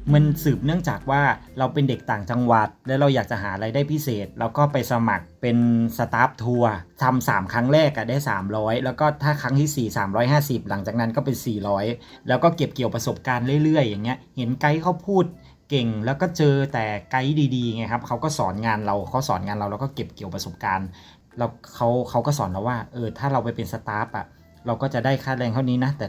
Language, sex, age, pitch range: Thai, male, 20-39, 110-140 Hz